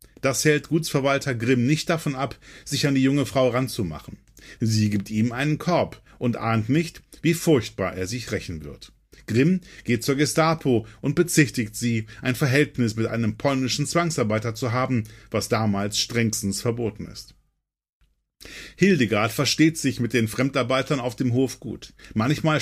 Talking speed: 155 wpm